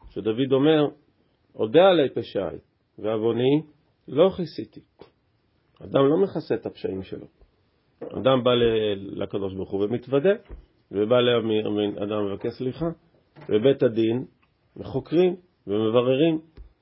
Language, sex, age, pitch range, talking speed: Hebrew, male, 40-59, 110-150 Hz, 100 wpm